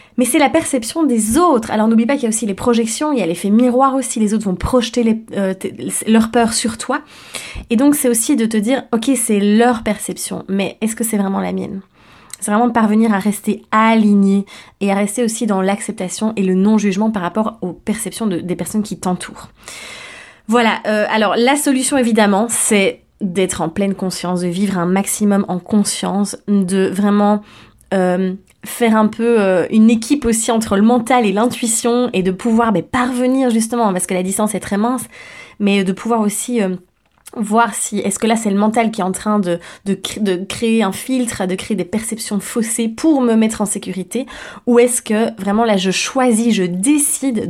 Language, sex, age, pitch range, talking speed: French, female, 20-39, 195-235 Hz, 205 wpm